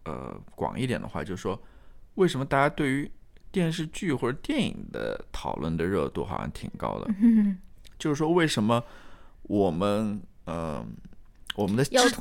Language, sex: Chinese, male